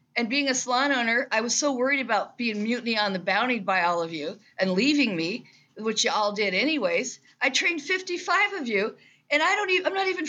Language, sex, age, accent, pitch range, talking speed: English, female, 50-69, American, 195-290 Hz, 225 wpm